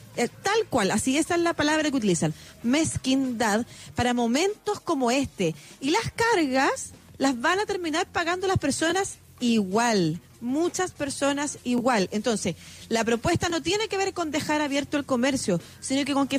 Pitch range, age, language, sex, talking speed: 220-315 Hz, 40-59, Spanish, female, 155 wpm